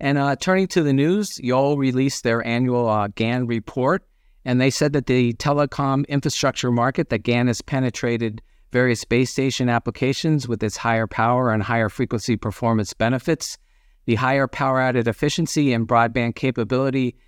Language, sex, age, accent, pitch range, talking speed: English, male, 50-69, American, 115-140 Hz, 160 wpm